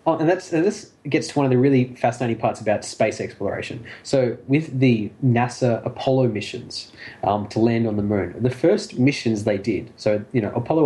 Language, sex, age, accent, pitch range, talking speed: English, male, 20-39, Australian, 115-140 Hz, 205 wpm